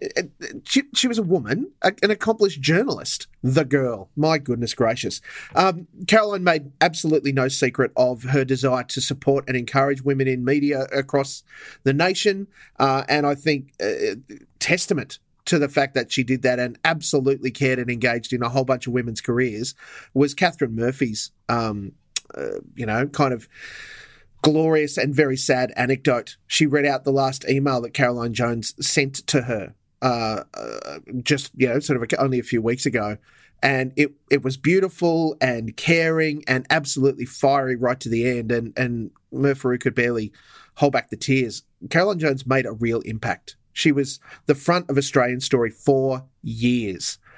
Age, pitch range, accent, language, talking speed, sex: 30-49, 125-150 Hz, Australian, English, 170 wpm, male